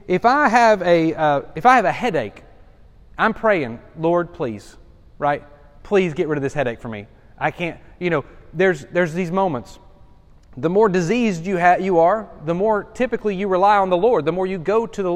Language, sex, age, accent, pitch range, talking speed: English, male, 30-49, American, 165-230 Hz, 205 wpm